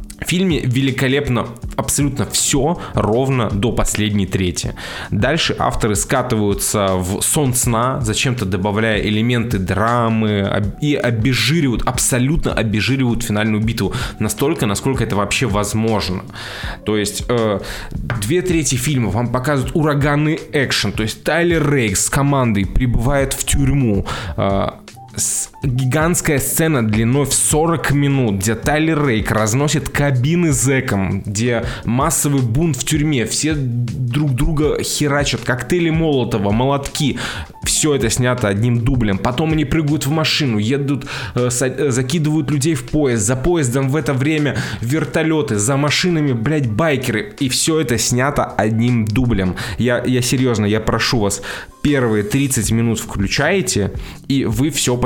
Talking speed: 130 wpm